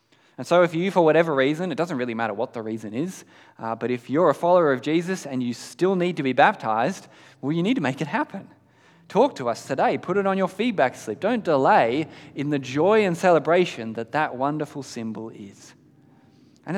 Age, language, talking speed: 20-39, English, 215 wpm